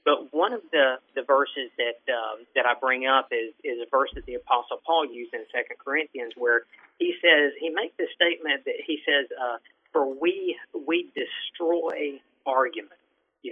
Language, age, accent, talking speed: English, 40-59, American, 180 wpm